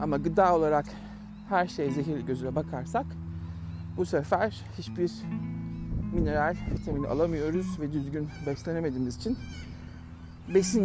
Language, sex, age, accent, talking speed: Turkish, male, 60-79, native, 105 wpm